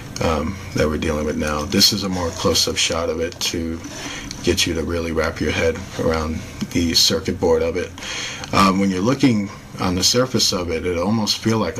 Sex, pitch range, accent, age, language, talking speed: male, 85-105 Hz, American, 40-59, English, 210 wpm